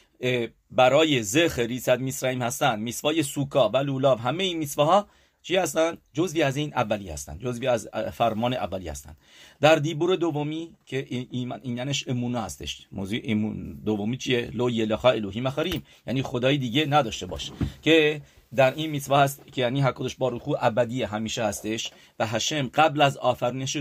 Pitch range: 110-140 Hz